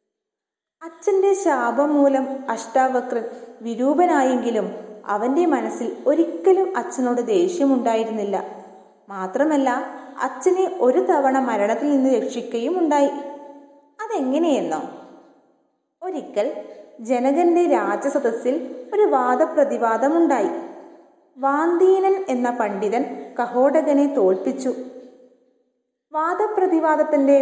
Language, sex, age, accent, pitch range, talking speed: Malayalam, female, 20-39, native, 235-310 Hz, 65 wpm